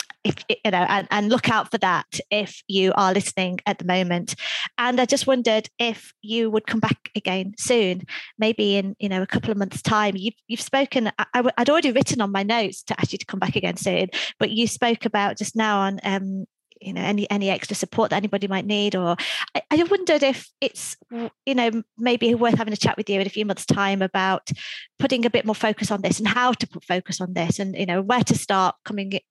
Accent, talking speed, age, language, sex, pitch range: British, 235 wpm, 30-49, English, female, 195-225 Hz